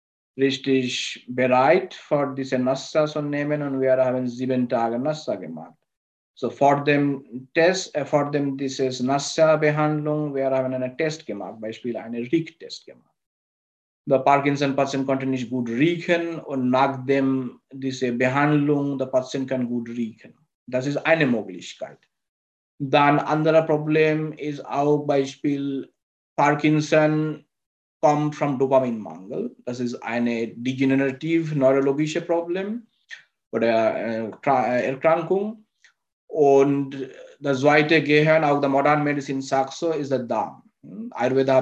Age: 50-69